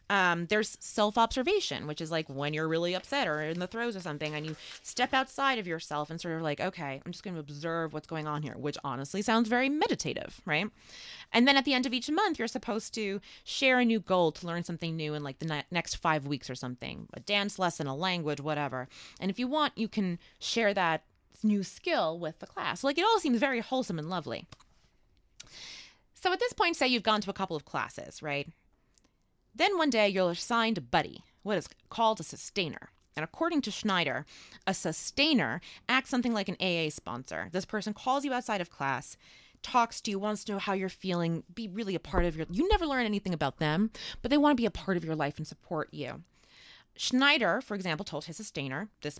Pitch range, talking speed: 155-230 Hz, 225 wpm